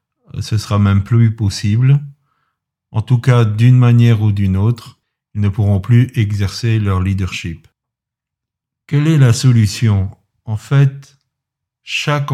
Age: 50-69